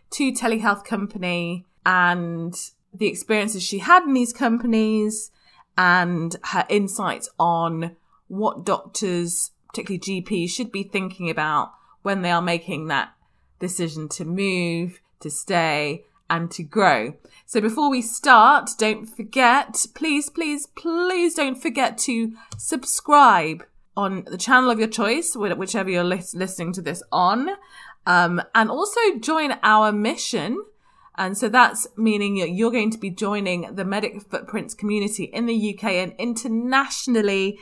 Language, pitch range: English, 175-230 Hz